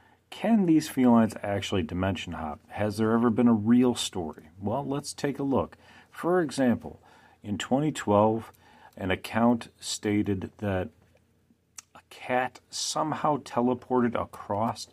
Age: 40-59